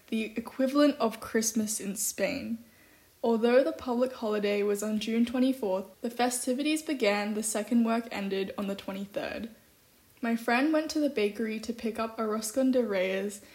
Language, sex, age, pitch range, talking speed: English, female, 10-29, 205-240 Hz, 160 wpm